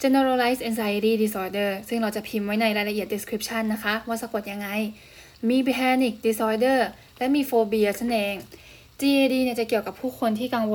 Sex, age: female, 10-29